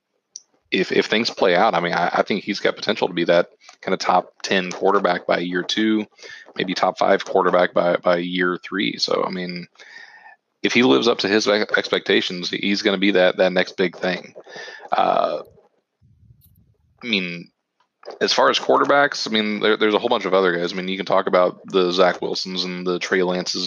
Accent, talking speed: American, 205 wpm